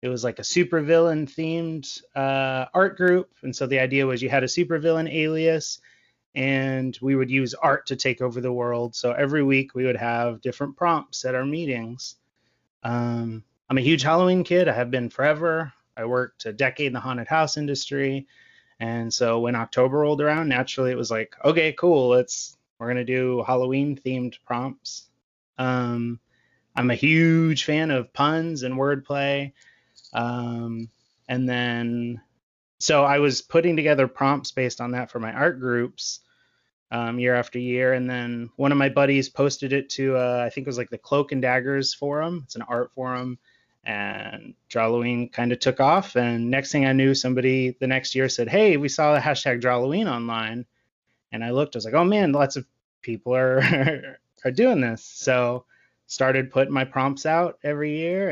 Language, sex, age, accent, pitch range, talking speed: English, male, 20-39, American, 125-145 Hz, 180 wpm